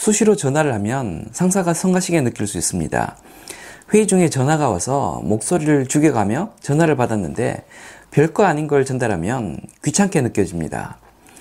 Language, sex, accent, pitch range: Korean, male, native, 115-175 Hz